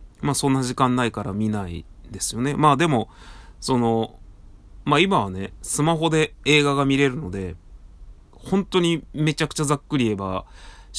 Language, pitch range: Japanese, 95-125 Hz